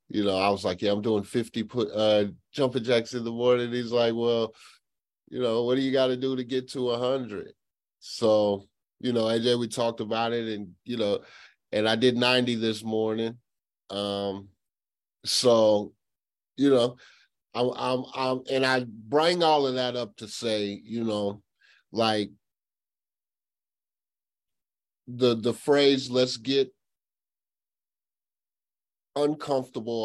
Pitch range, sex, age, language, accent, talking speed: 105-130 Hz, male, 30-49, English, American, 150 wpm